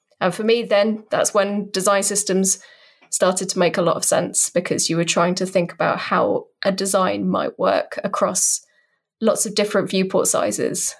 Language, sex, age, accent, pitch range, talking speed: English, female, 10-29, British, 190-230 Hz, 180 wpm